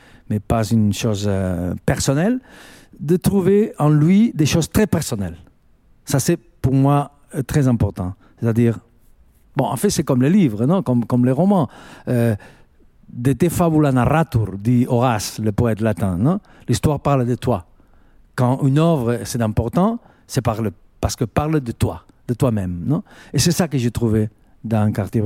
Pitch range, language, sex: 110-145 Hz, French, male